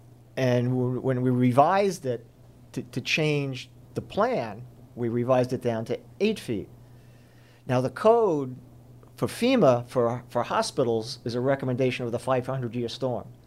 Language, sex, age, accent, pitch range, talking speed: English, male, 50-69, American, 120-140 Hz, 145 wpm